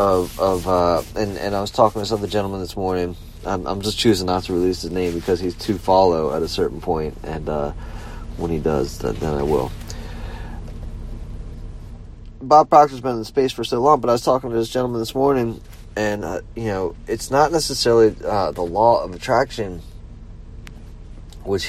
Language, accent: English, American